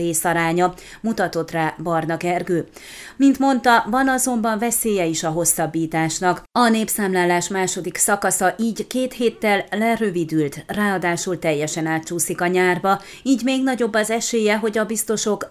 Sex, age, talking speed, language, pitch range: female, 30-49, 130 wpm, Hungarian, 175-225 Hz